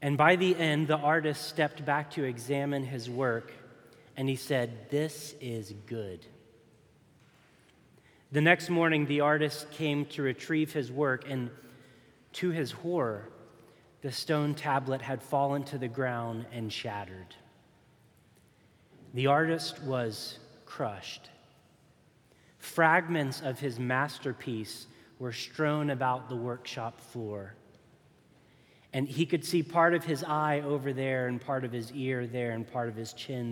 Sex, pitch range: male, 120-150 Hz